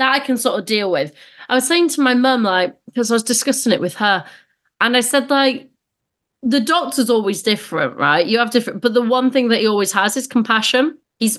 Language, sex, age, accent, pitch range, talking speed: English, female, 30-49, British, 190-250 Hz, 230 wpm